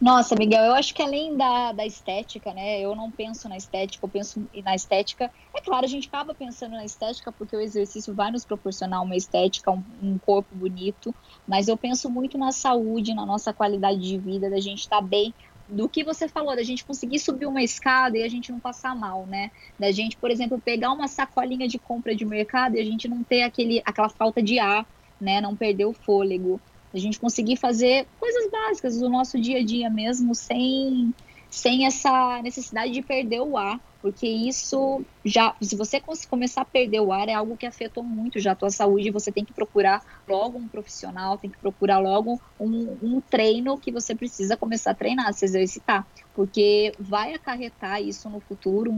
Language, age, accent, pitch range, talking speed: Portuguese, 10-29, Brazilian, 205-250 Hz, 200 wpm